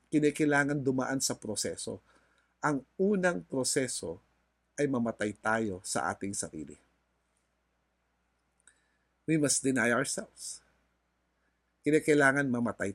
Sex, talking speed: male, 90 wpm